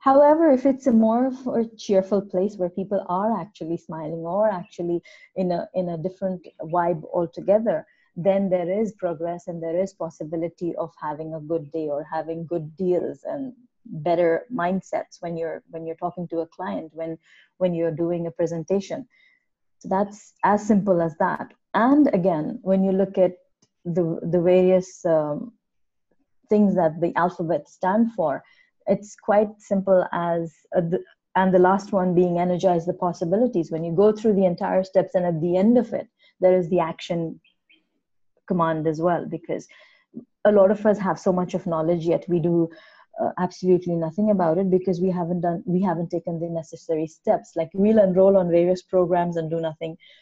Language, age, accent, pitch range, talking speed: English, 30-49, Indian, 170-200 Hz, 180 wpm